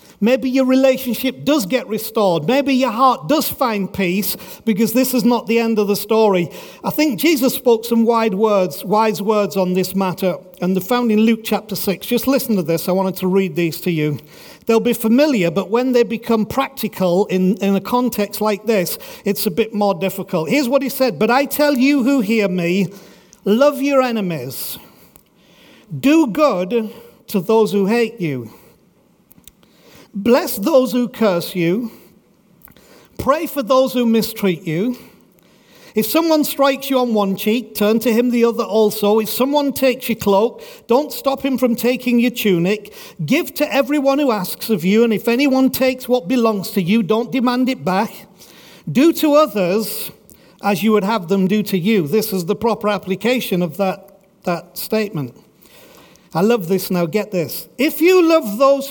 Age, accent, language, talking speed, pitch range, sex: 50-69, British, English, 175 wpm, 195-255 Hz, male